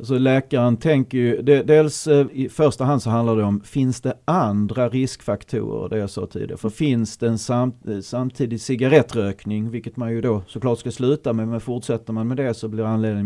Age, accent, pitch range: 30-49, native, 105-125 Hz